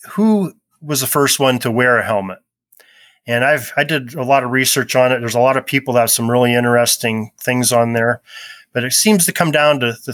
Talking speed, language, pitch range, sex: 245 wpm, English, 115-140 Hz, male